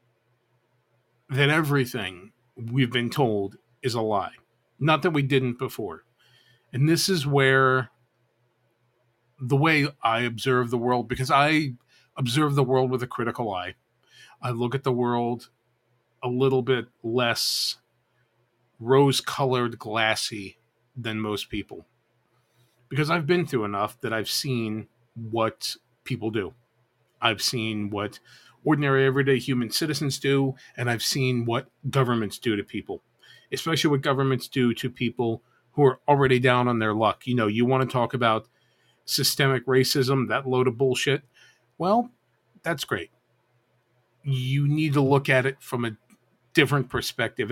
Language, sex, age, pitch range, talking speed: English, male, 40-59, 120-135 Hz, 140 wpm